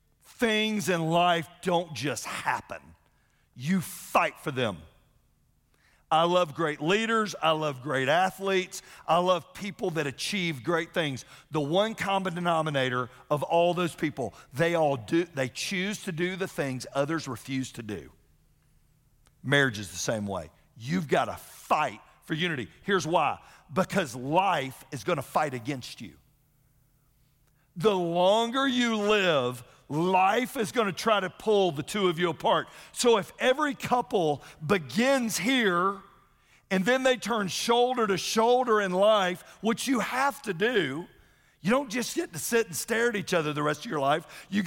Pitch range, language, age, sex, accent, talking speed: 150-215 Hz, English, 50-69, male, American, 160 wpm